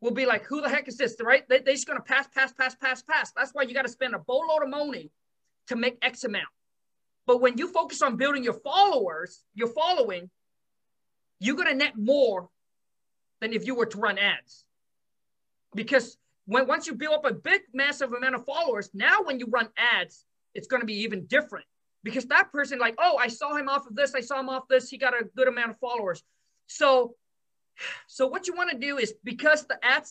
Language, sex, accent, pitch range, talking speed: English, male, American, 235-285 Hz, 215 wpm